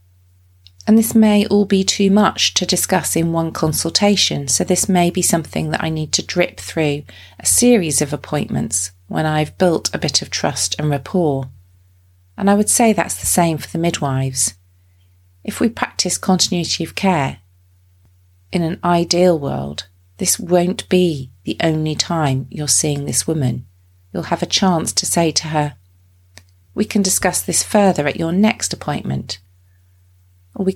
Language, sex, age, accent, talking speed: English, female, 40-59, British, 165 wpm